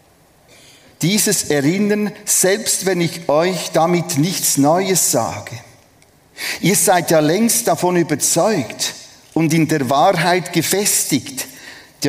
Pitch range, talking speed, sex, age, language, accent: 130-180 Hz, 110 wpm, male, 50-69, German, Austrian